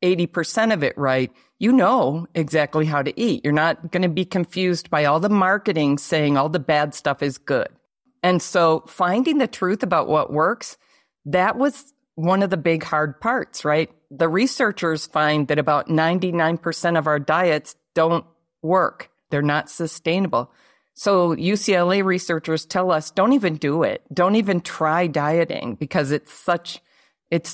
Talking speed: 160 wpm